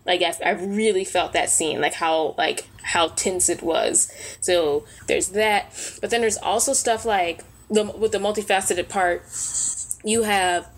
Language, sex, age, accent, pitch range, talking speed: English, female, 10-29, American, 175-215 Hz, 165 wpm